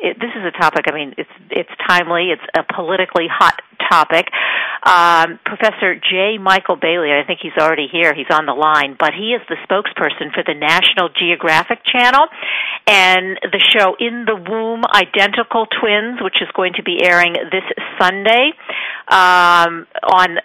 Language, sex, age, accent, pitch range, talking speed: English, female, 50-69, American, 170-210 Hz, 165 wpm